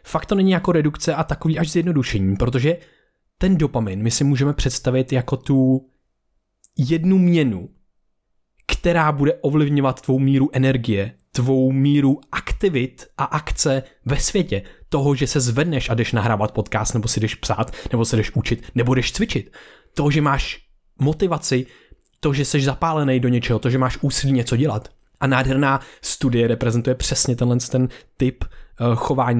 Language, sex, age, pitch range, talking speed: Czech, male, 20-39, 115-140 Hz, 155 wpm